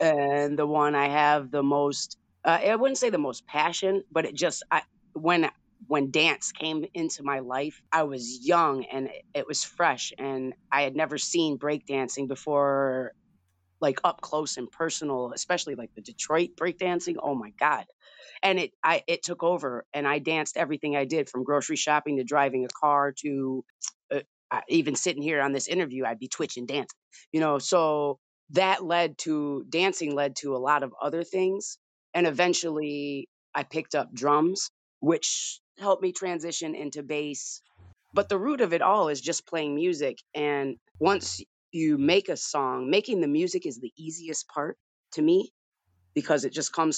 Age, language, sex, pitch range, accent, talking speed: 30-49, English, female, 135-165 Hz, American, 175 wpm